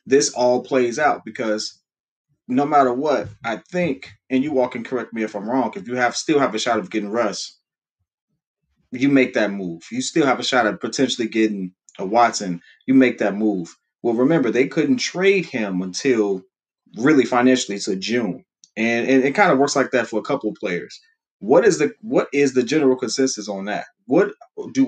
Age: 30-49